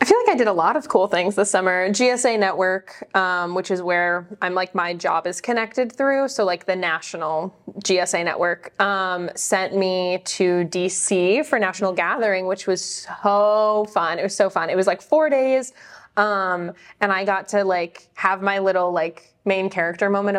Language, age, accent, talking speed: English, 20-39, American, 190 wpm